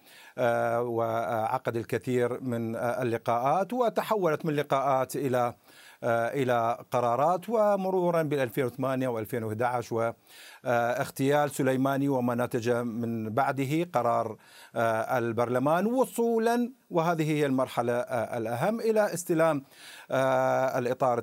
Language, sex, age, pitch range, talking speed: Arabic, male, 50-69, 115-145 Hz, 80 wpm